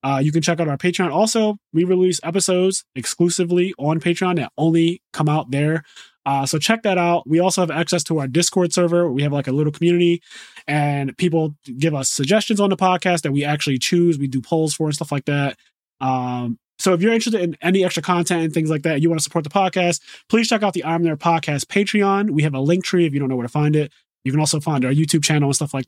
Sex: male